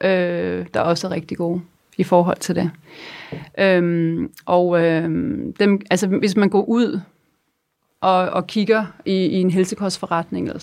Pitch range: 165-195 Hz